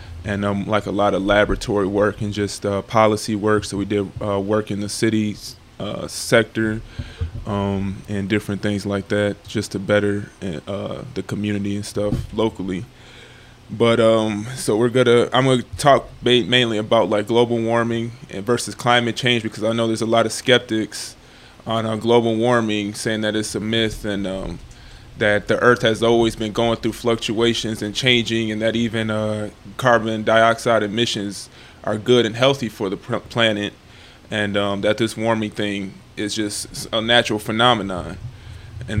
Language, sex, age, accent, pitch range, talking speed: English, male, 20-39, American, 105-115 Hz, 170 wpm